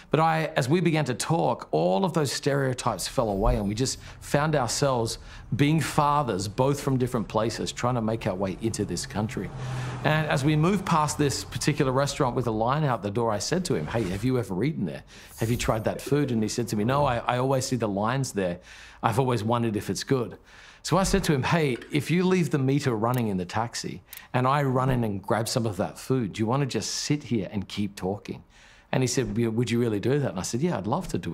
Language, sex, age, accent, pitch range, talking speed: English, male, 40-59, Australian, 110-150 Hz, 250 wpm